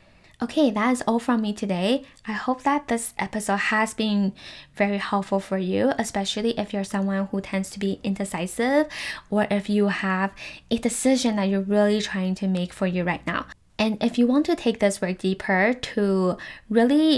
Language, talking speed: English, 190 wpm